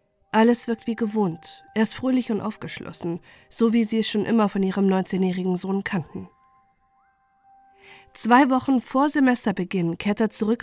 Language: German